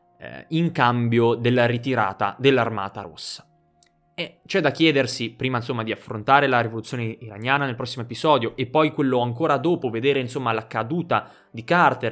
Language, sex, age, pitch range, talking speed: Italian, male, 20-39, 115-145 Hz, 155 wpm